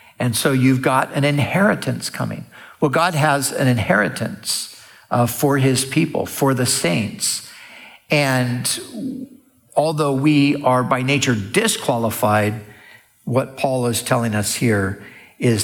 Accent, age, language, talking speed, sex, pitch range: American, 60-79, English, 125 wpm, male, 115-140 Hz